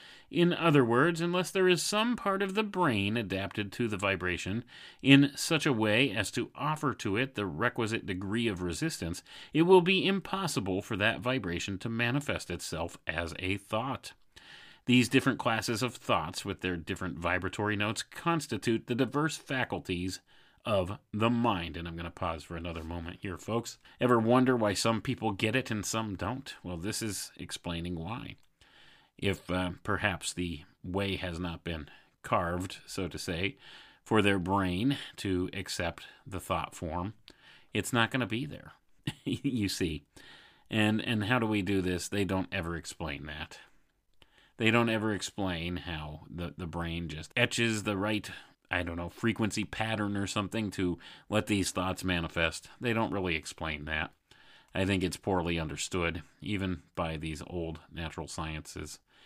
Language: English